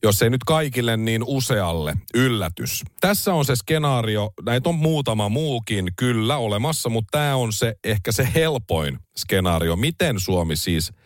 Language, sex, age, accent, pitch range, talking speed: Finnish, male, 40-59, native, 90-135 Hz, 150 wpm